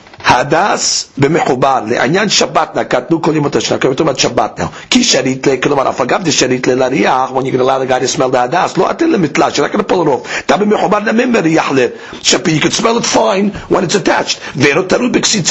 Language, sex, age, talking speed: English, male, 50-69, 80 wpm